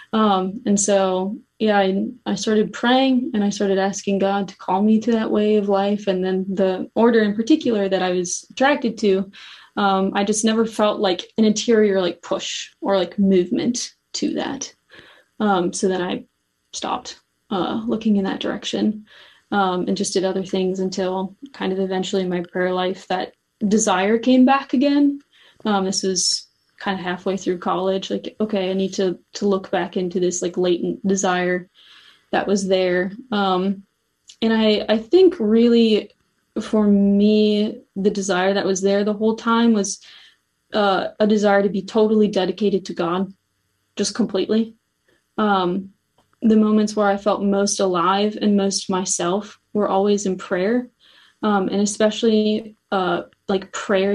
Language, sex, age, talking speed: English, female, 20-39, 165 wpm